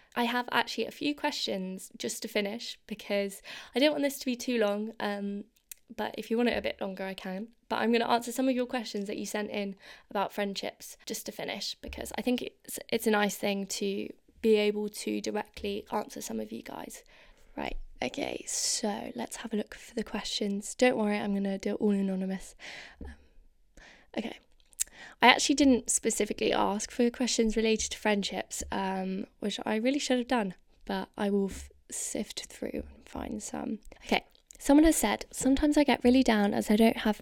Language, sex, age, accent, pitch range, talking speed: English, female, 20-39, British, 205-245 Hz, 195 wpm